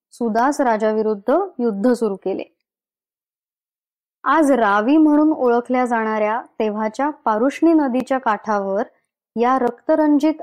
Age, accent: 20-39, native